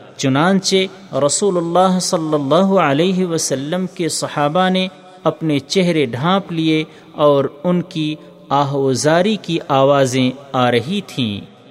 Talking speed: 120 wpm